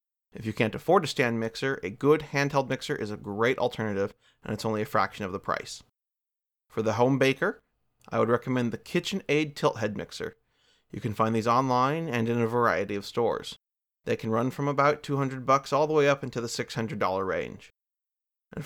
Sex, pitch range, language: male, 115-150 Hz, English